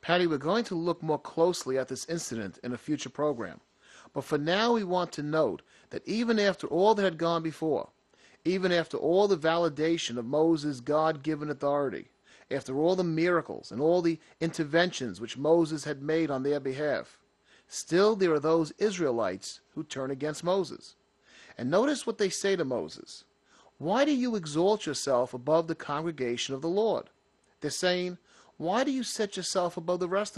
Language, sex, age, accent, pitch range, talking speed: English, male, 40-59, American, 150-185 Hz, 180 wpm